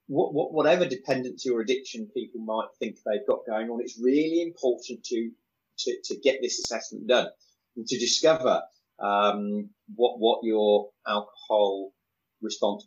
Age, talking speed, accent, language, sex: 30-49, 140 wpm, British, English, male